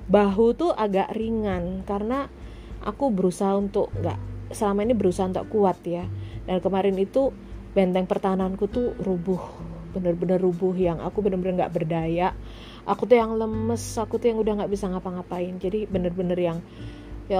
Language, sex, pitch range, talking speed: Indonesian, female, 160-205 Hz, 150 wpm